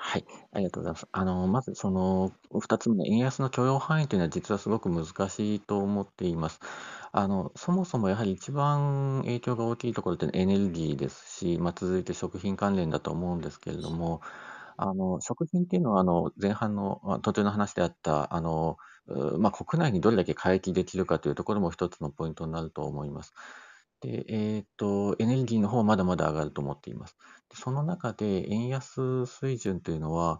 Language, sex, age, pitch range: Japanese, male, 40-59, 90-125 Hz